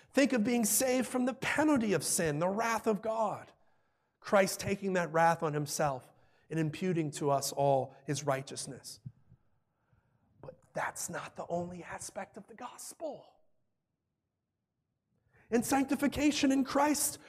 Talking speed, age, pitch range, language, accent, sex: 135 wpm, 30-49, 165-245 Hz, English, American, male